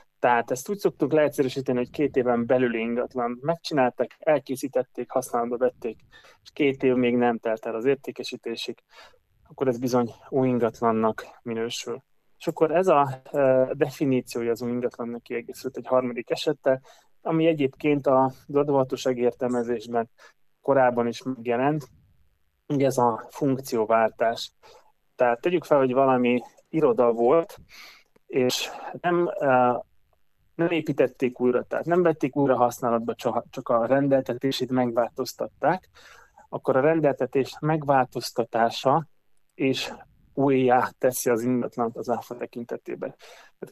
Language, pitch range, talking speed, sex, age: Hungarian, 120-140 Hz, 120 wpm, male, 20-39